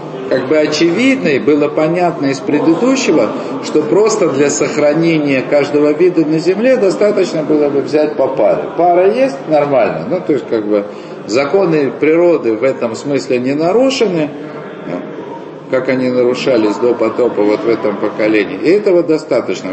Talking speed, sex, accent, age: 150 wpm, male, native, 50-69